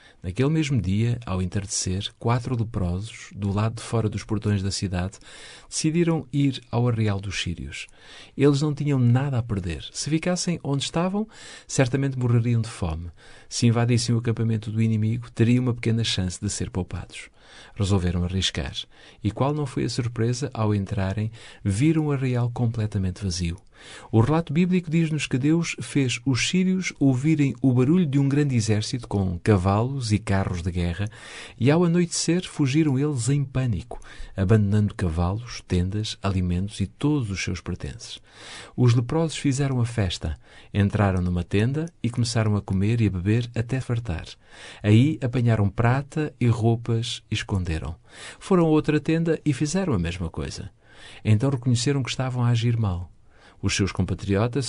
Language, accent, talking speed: Portuguese, Portuguese, 160 wpm